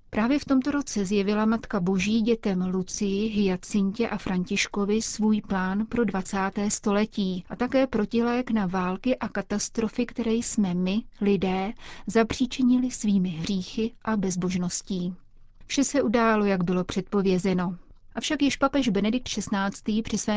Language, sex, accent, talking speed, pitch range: Czech, female, native, 135 wpm, 190-220 Hz